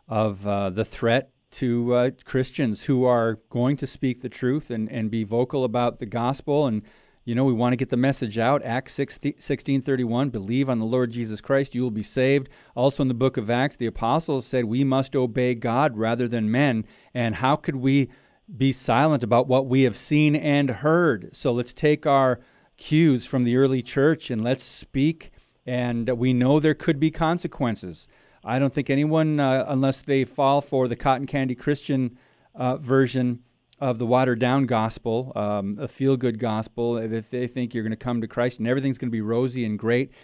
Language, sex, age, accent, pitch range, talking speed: English, male, 40-59, American, 120-140 Hz, 195 wpm